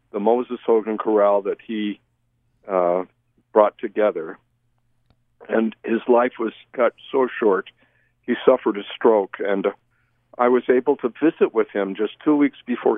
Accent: American